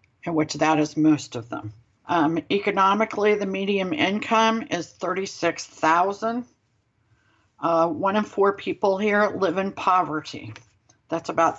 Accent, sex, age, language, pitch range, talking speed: American, female, 60-79, English, 150-195 Hz, 135 wpm